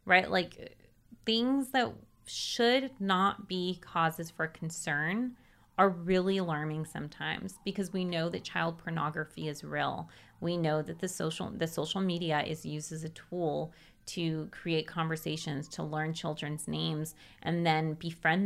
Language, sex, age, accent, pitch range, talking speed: English, female, 30-49, American, 160-195 Hz, 145 wpm